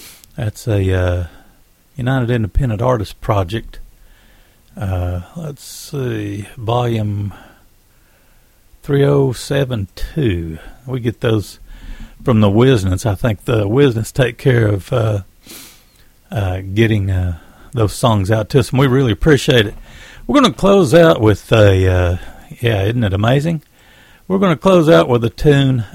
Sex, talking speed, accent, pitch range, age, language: male, 135 wpm, American, 100-130 Hz, 60-79, English